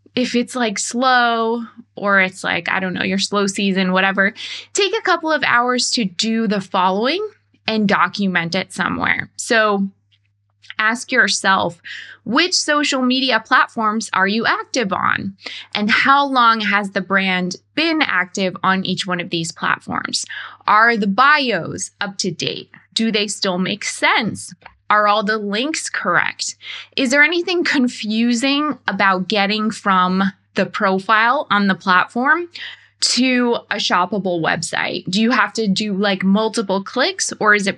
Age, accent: 20-39, American